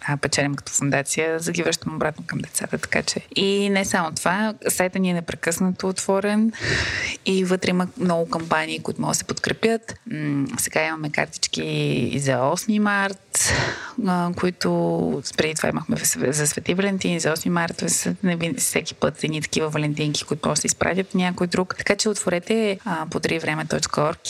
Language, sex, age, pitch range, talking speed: Bulgarian, female, 20-39, 150-195 Hz, 155 wpm